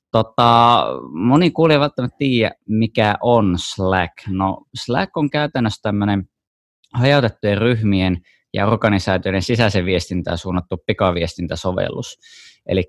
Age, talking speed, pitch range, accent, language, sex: 20-39, 100 wpm, 90-110 Hz, native, Finnish, male